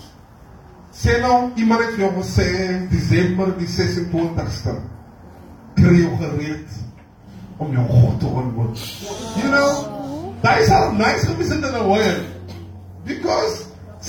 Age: 30-49